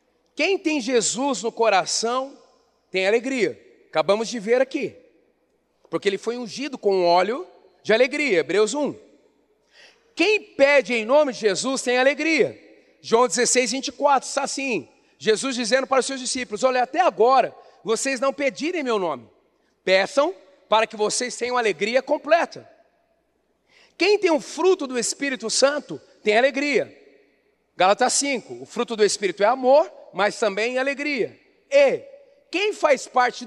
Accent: Brazilian